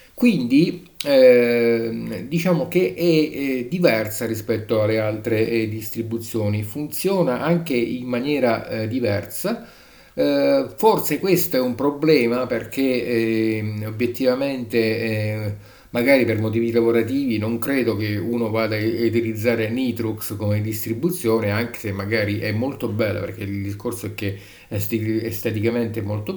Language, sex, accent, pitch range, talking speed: Italian, male, native, 110-140 Hz, 125 wpm